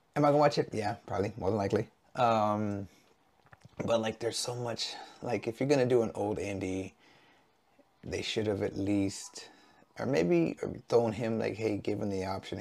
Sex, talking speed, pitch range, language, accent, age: male, 180 wpm, 100-125 Hz, English, American, 30-49